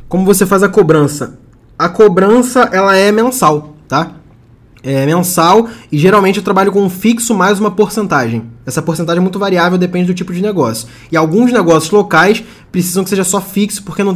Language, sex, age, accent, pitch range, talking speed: Portuguese, male, 20-39, Brazilian, 150-200 Hz, 185 wpm